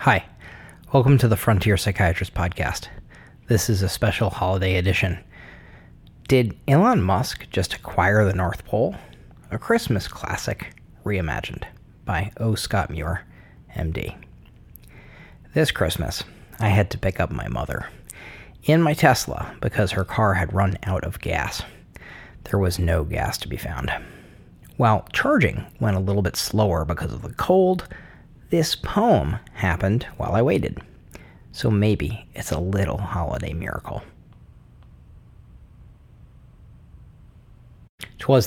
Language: English